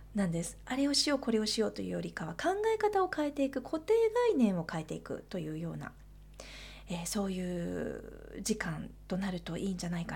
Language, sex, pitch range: Japanese, female, 190-300 Hz